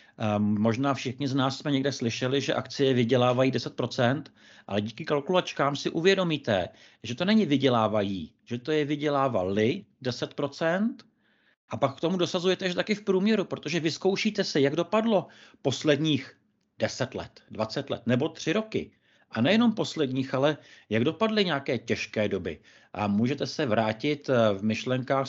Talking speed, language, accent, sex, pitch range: 145 wpm, Czech, native, male, 120-160 Hz